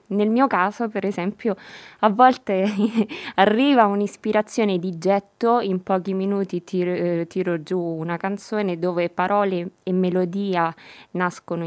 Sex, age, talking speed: female, 20-39, 130 wpm